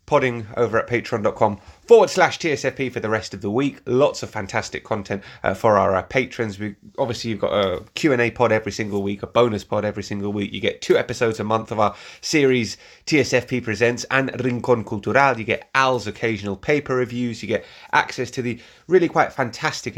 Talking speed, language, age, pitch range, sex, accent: 200 wpm, English, 30-49, 100-120 Hz, male, British